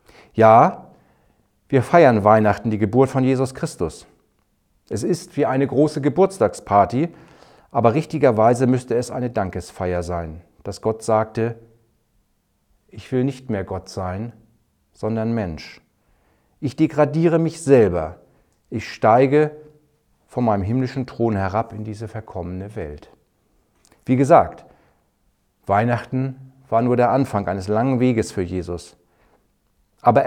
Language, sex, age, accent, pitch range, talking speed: German, male, 40-59, German, 100-130 Hz, 120 wpm